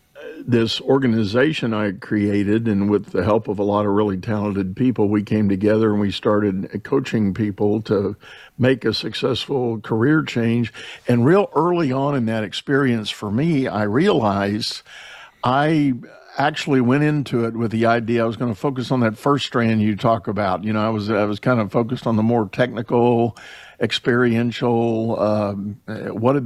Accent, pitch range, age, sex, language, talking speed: American, 105-130 Hz, 50-69, male, English, 175 wpm